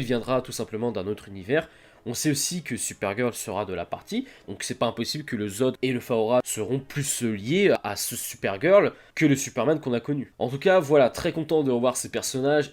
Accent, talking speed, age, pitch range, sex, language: French, 220 wpm, 20-39, 115-150 Hz, male, French